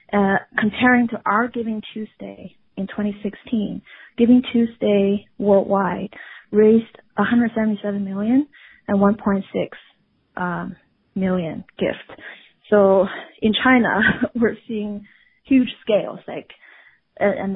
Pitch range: 195-230 Hz